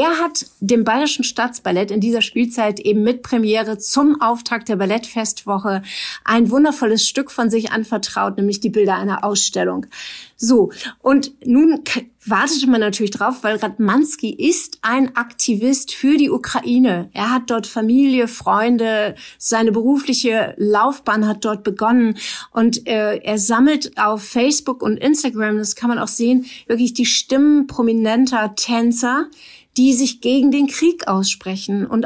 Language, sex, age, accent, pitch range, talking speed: German, female, 50-69, German, 210-255 Hz, 145 wpm